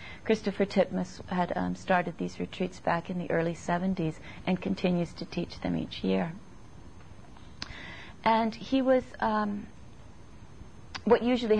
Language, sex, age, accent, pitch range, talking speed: English, female, 40-59, American, 160-200 Hz, 130 wpm